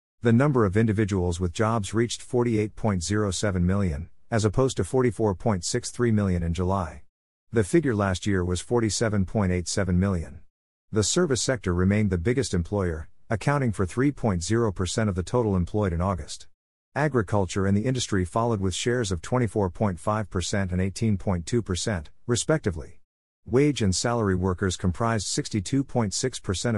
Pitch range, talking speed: 90-115 Hz, 130 wpm